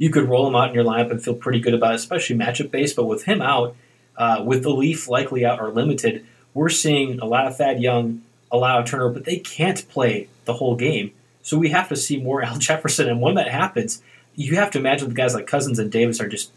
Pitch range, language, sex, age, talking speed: 120-155 Hz, English, male, 20-39, 255 wpm